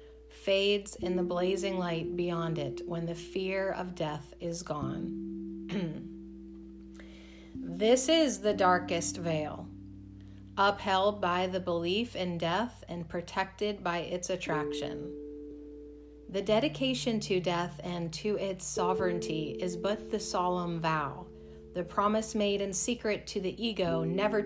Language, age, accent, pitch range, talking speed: English, 40-59, American, 150-205 Hz, 130 wpm